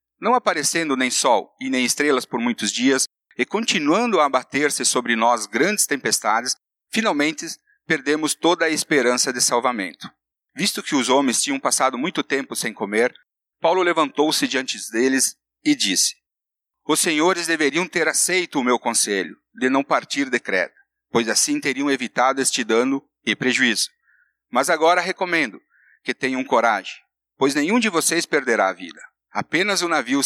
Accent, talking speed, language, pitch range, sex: Brazilian, 155 wpm, Portuguese, 135-185 Hz, male